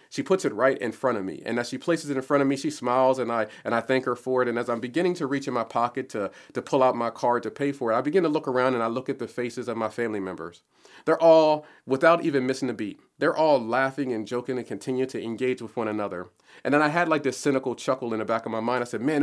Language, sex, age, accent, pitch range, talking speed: English, male, 40-59, American, 115-135 Hz, 305 wpm